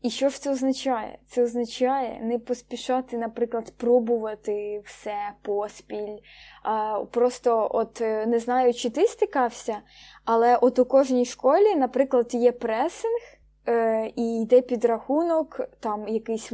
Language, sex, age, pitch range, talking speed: Ukrainian, female, 20-39, 225-260 Hz, 120 wpm